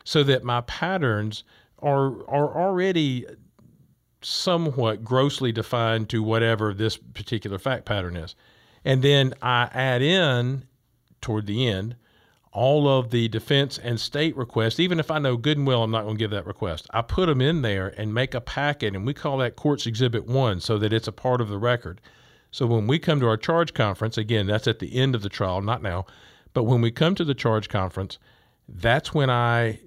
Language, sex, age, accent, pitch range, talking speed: English, male, 50-69, American, 110-135 Hz, 195 wpm